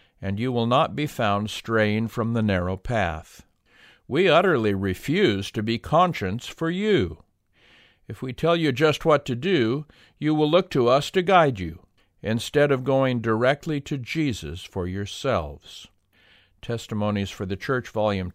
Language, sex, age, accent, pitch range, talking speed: English, male, 50-69, American, 95-135 Hz, 155 wpm